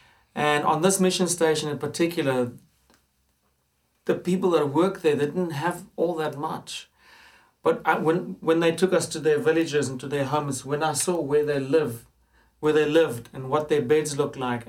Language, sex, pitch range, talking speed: English, male, 150-180 Hz, 190 wpm